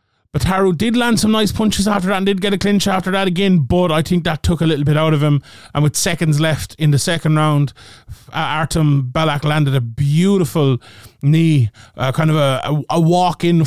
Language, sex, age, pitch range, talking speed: English, male, 30-49, 140-175 Hz, 215 wpm